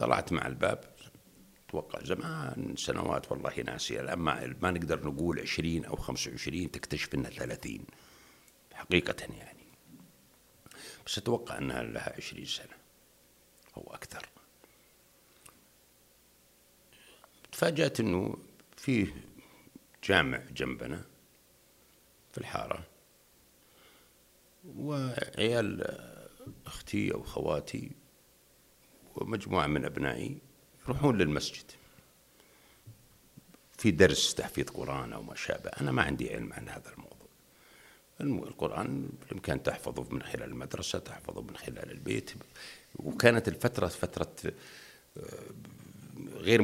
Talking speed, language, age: 95 wpm, Arabic, 60-79